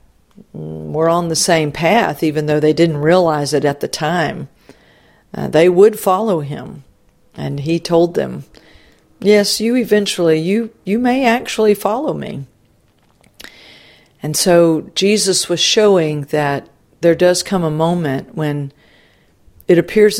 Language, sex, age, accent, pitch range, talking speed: English, female, 50-69, American, 150-185 Hz, 135 wpm